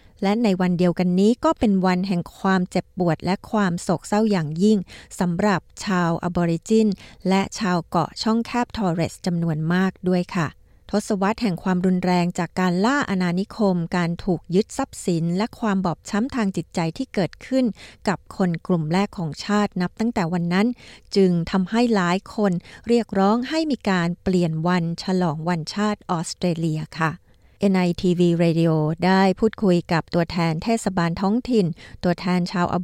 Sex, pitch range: female, 175-205 Hz